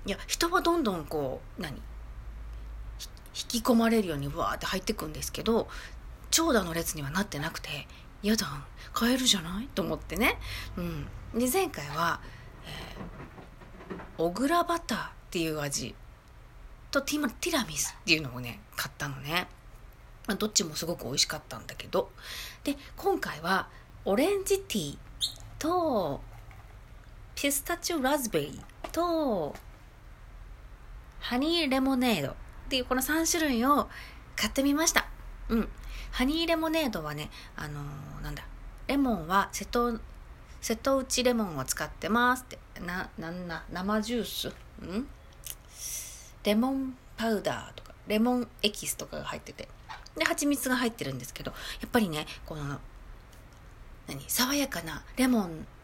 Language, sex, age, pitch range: Japanese, female, 40-59, 165-270 Hz